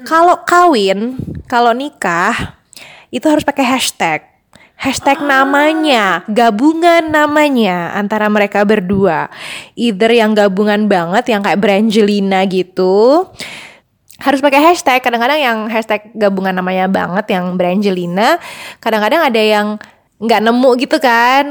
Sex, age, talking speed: female, 20-39, 115 wpm